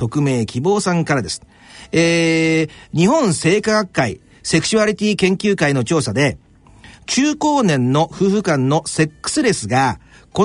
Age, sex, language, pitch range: 50-69, male, Japanese, 135-230 Hz